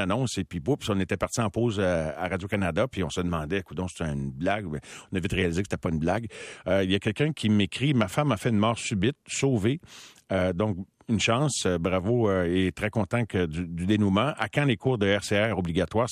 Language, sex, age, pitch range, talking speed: French, male, 50-69, 95-140 Hz, 230 wpm